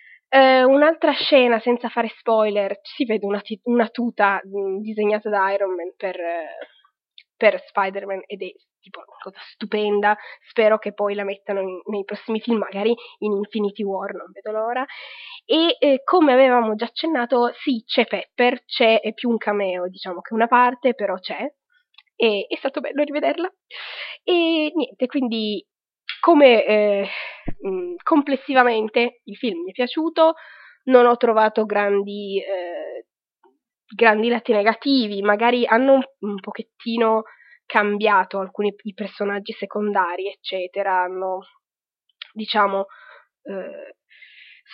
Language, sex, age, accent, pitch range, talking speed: Italian, female, 20-39, native, 205-265 Hz, 140 wpm